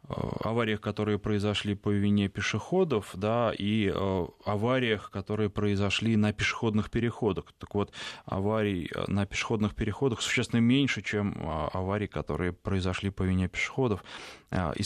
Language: Russian